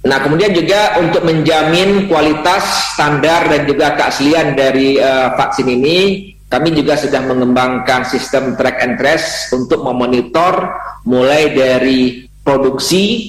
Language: Indonesian